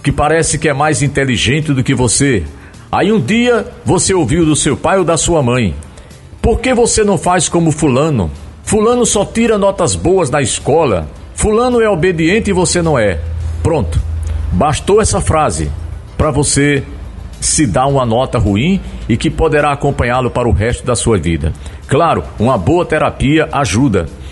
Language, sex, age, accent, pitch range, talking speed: Portuguese, male, 50-69, Brazilian, 100-165 Hz, 170 wpm